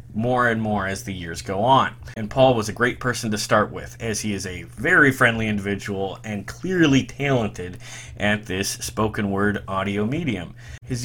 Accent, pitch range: American, 105-125 Hz